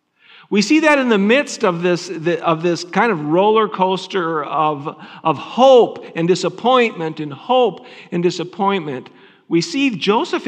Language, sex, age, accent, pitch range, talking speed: English, male, 50-69, American, 175-245 Hz, 150 wpm